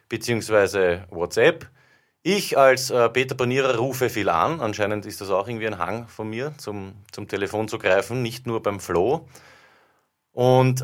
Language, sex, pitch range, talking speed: German, male, 95-125 Hz, 155 wpm